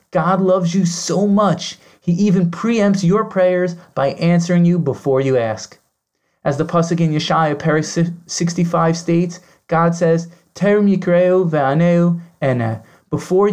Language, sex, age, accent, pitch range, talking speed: English, male, 20-39, American, 165-195 Hz, 135 wpm